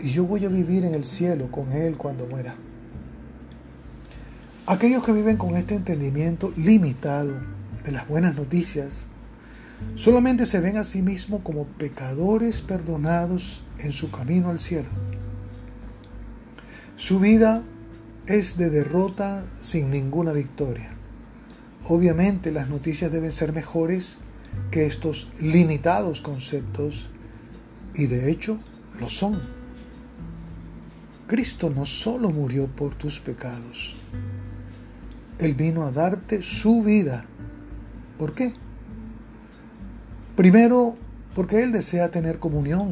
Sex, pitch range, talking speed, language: male, 115-180 Hz, 115 wpm, Spanish